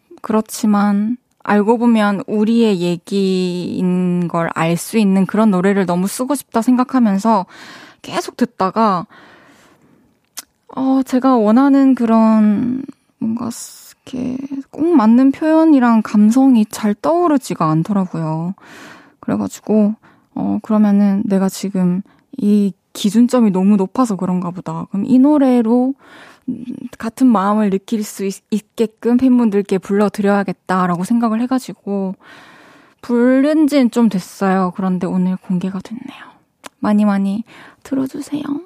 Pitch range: 195-260 Hz